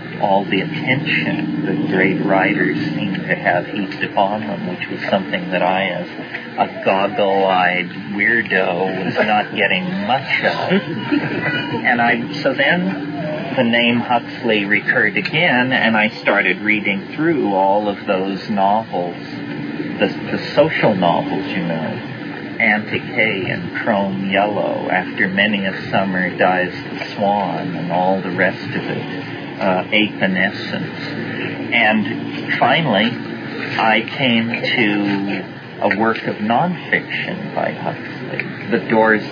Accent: American